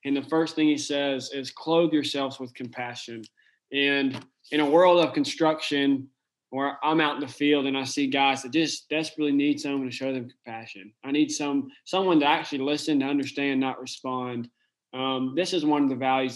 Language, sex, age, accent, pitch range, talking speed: English, male, 20-39, American, 130-150 Hz, 200 wpm